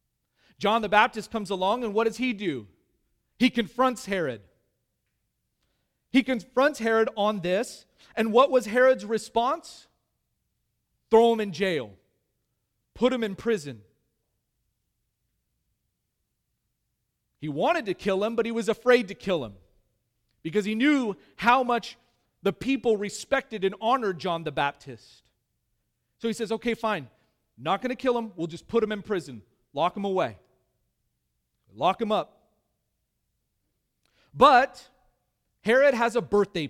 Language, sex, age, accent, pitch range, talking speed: English, male, 40-59, American, 175-240 Hz, 135 wpm